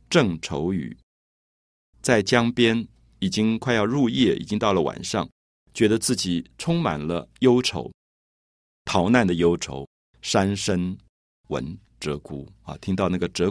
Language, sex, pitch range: Chinese, male, 75-120 Hz